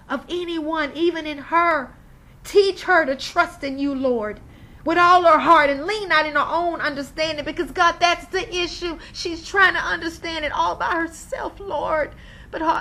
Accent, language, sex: American, English, female